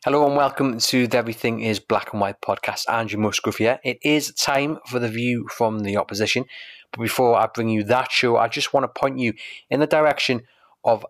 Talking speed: 215 wpm